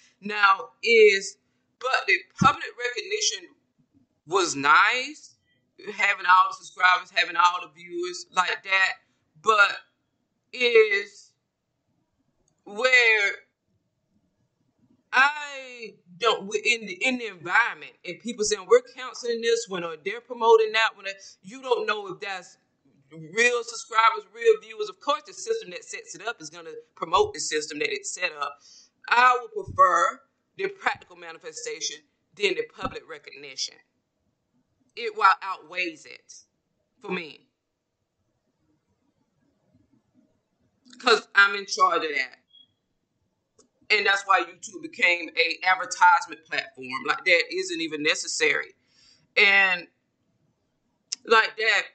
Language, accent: English, American